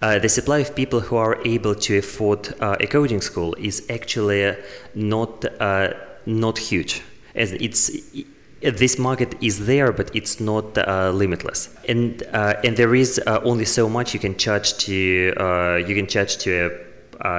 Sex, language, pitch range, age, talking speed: male, English, 90-110 Hz, 20-39, 175 wpm